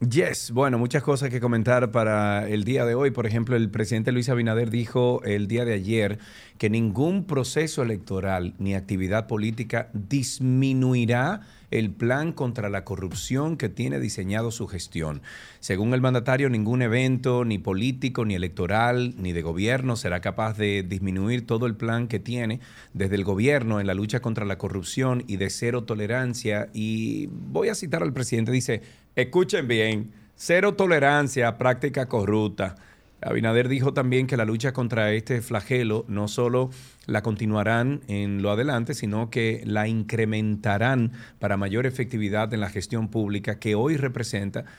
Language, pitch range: Spanish, 105-125 Hz